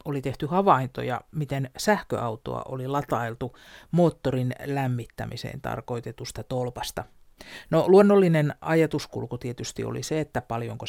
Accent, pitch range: native, 130-180 Hz